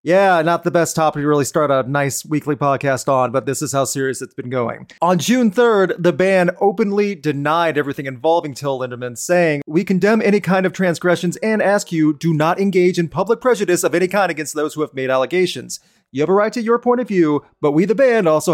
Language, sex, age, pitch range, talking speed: English, male, 30-49, 140-185 Hz, 230 wpm